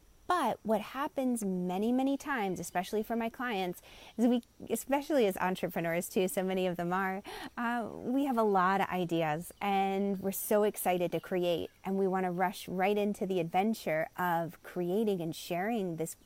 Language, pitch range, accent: English, 190-275 Hz, American